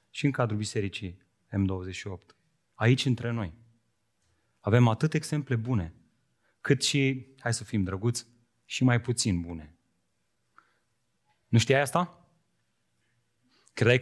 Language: Romanian